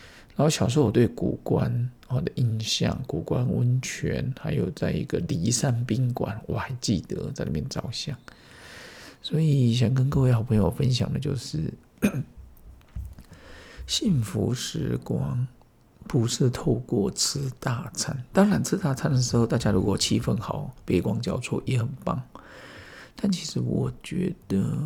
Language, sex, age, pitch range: Chinese, male, 50-69, 120-160 Hz